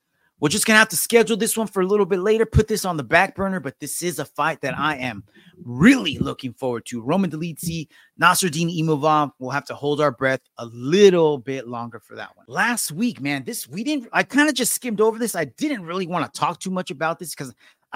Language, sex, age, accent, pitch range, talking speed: English, male, 30-49, American, 145-200 Hz, 245 wpm